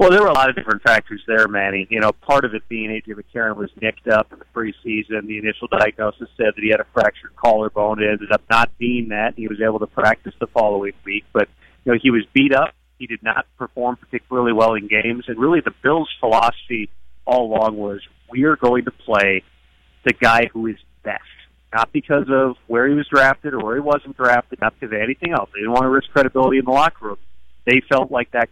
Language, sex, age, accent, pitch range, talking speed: English, male, 40-59, American, 105-125 Hz, 235 wpm